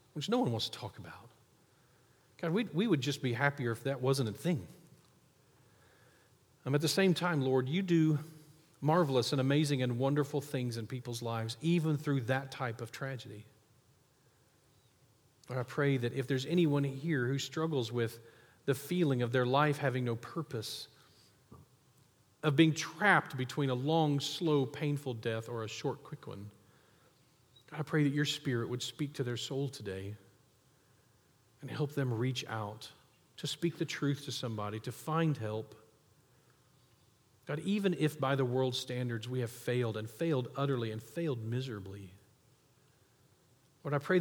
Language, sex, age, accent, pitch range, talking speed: English, male, 40-59, American, 115-145 Hz, 160 wpm